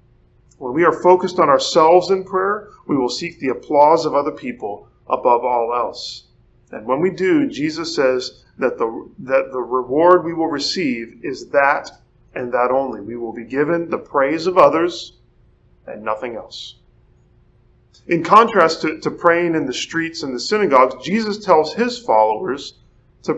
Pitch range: 135-185 Hz